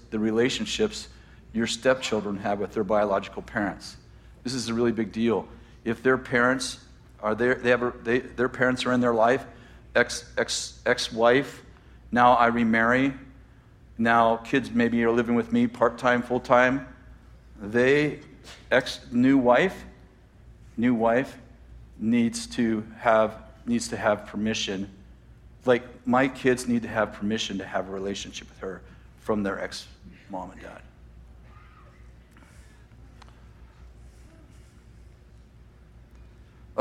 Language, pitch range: English, 105-125 Hz